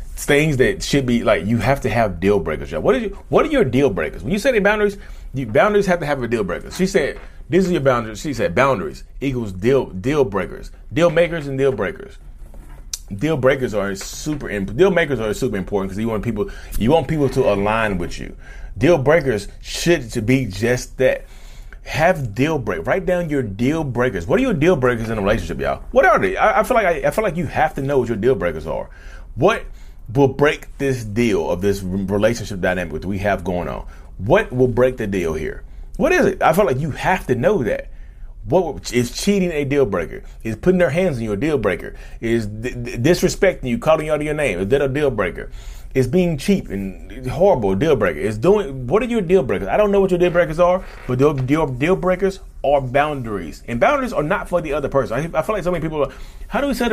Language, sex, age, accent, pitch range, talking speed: English, male, 30-49, American, 110-170 Hz, 240 wpm